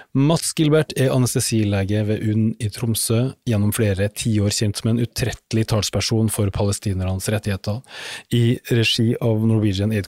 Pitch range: 100-120 Hz